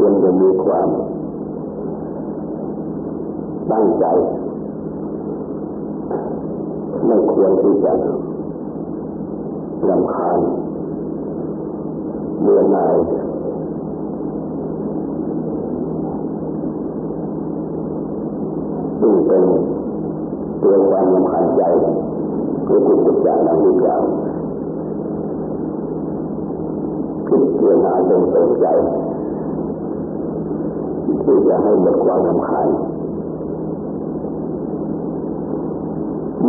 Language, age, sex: Thai, 50-69, male